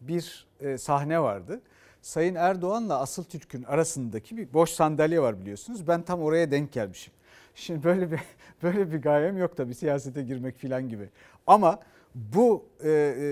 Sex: male